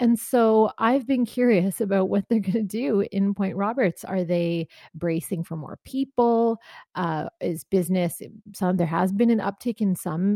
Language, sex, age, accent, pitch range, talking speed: English, female, 30-49, American, 180-230 Hz, 180 wpm